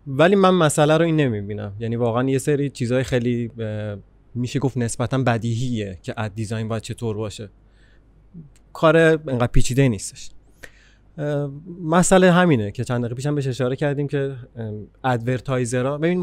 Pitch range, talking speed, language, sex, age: 110-135 Hz, 135 wpm, Persian, male, 30-49